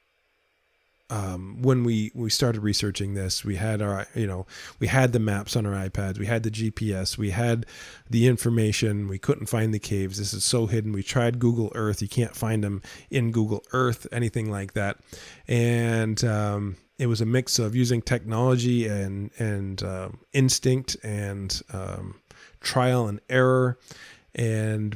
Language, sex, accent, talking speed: English, male, American, 165 wpm